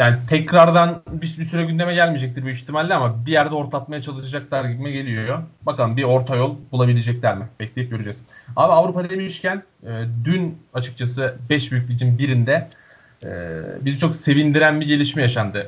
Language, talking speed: Turkish, 155 wpm